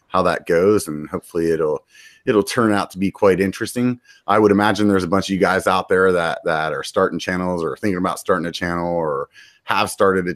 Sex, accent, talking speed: male, American, 225 wpm